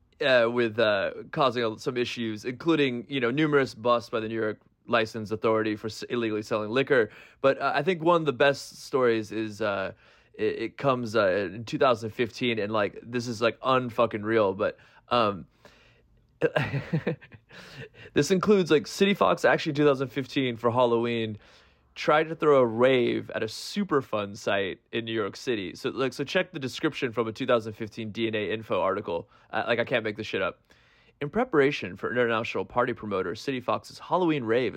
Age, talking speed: 20-39, 175 wpm